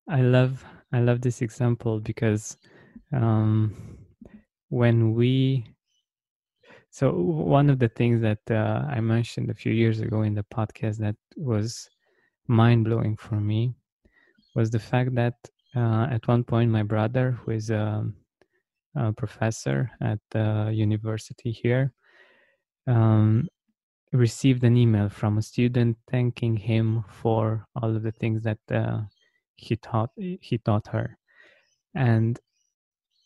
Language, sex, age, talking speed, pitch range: English, male, 20-39, 130 wpm, 110-130 Hz